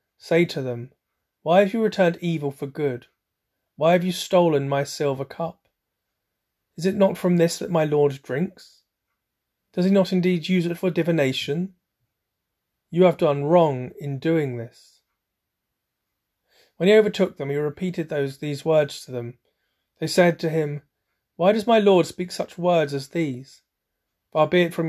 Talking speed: 165 wpm